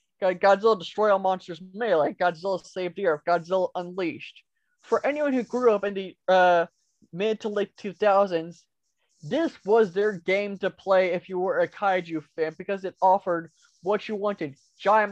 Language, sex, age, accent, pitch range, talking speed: English, male, 20-39, American, 180-225 Hz, 170 wpm